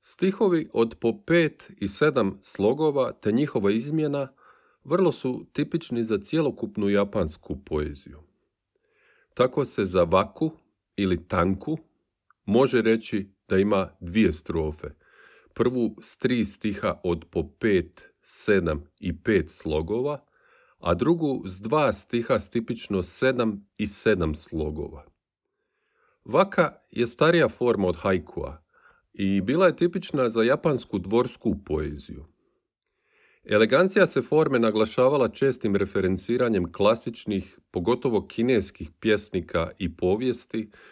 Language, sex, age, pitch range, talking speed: Croatian, male, 40-59, 95-130 Hz, 115 wpm